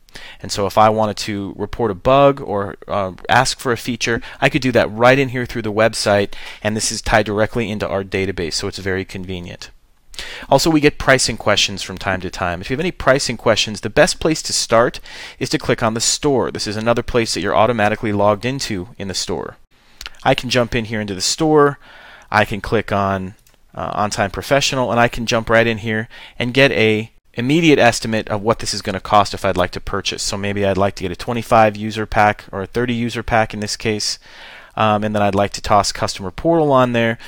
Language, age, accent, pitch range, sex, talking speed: English, 30-49, American, 100-125 Hz, male, 230 wpm